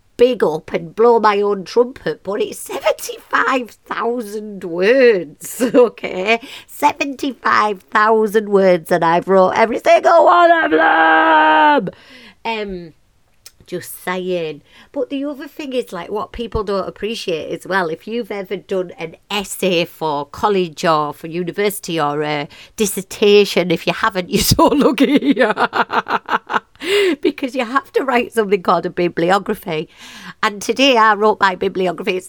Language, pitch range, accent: English, 175-230 Hz, British